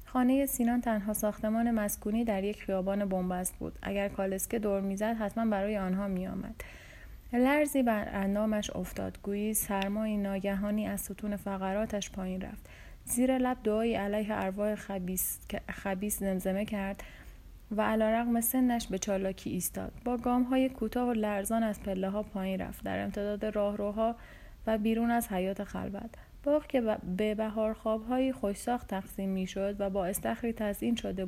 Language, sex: Persian, female